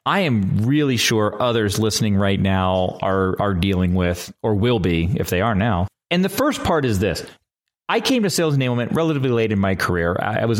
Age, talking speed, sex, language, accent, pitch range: 30-49, 210 wpm, male, English, American, 100-145 Hz